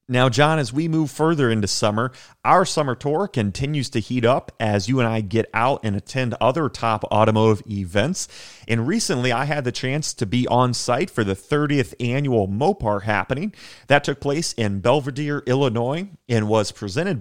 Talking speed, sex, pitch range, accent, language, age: 180 wpm, male, 110-145 Hz, American, English, 30-49